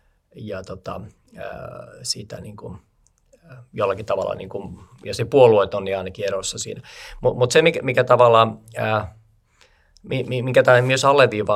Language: Finnish